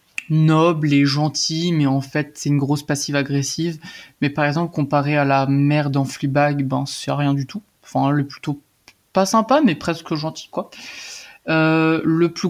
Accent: French